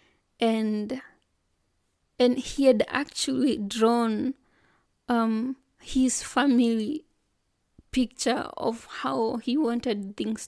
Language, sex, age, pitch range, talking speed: English, female, 20-39, 225-265 Hz, 85 wpm